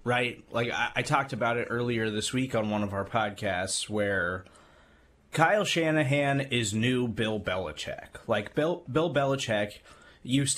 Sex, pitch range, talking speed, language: male, 110-140 Hz, 155 wpm, English